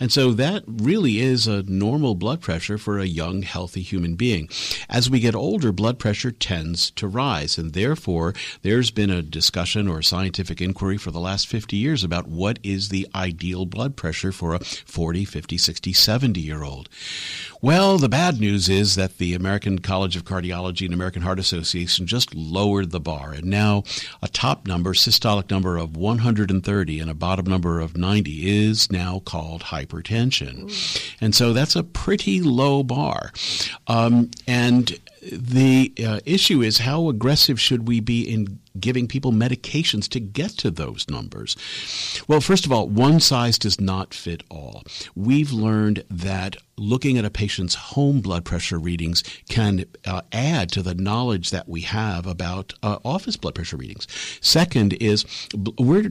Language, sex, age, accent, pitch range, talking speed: English, male, 50-69, American, 90-120 Hz, 165 wpm